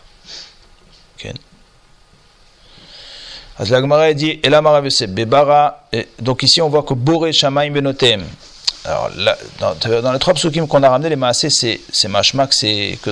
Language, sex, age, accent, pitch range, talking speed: French, male, 40-59, French, 125-155 Hz, 115 wpm